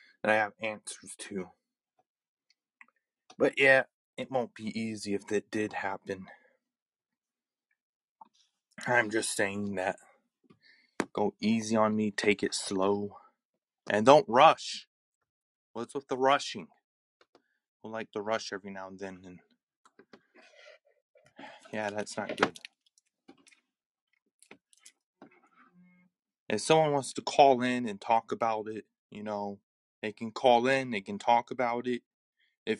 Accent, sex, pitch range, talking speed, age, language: American, male, 100-125 Hz, 125 wpm, 20-39, English